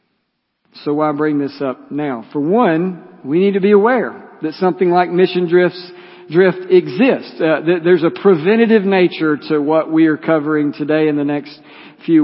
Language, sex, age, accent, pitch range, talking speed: English, male, 50-69, American, 150-185 Hz, 175 wpm